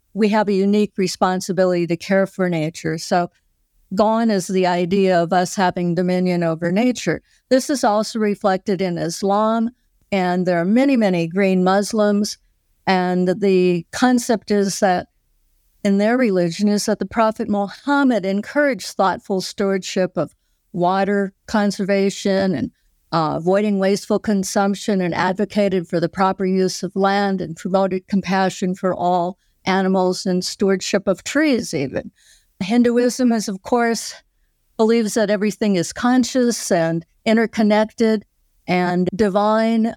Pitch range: 185-225 Hz